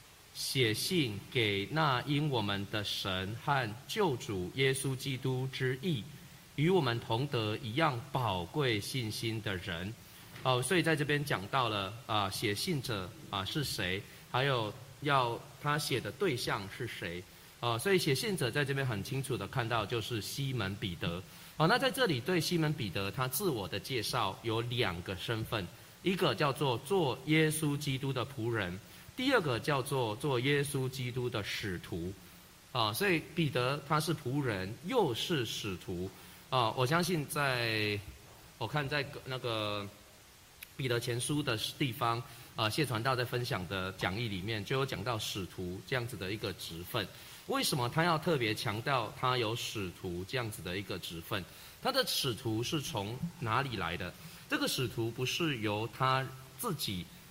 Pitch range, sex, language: 105-145 Hz, male, English